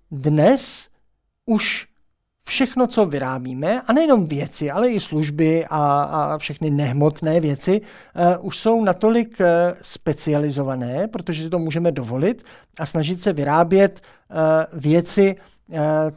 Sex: male